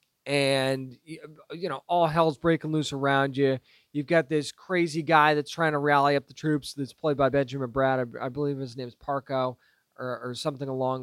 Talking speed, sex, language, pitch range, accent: 195 wpm, male, English, 135-170 Hz, American